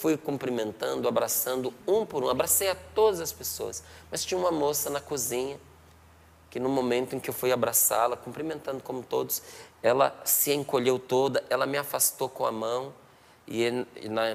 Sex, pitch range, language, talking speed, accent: male, 110-165 Hz, Portuguese, 170 wpm, Brazilian